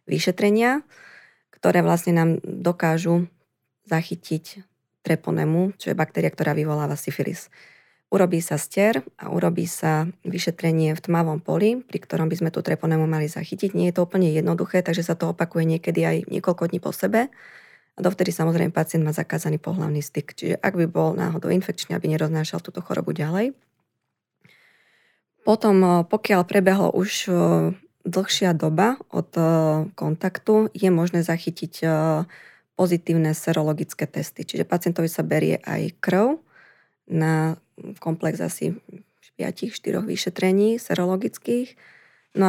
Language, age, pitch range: Slovak, 20-39, 160-190 Hz